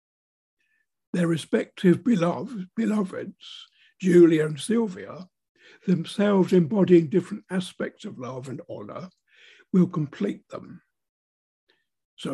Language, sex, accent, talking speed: English, male, British, 90 wpm